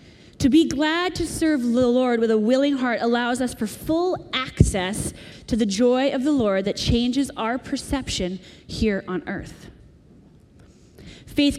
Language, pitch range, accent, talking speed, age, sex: English, 225-295 Hz, American, 155 wpm, 30-49, female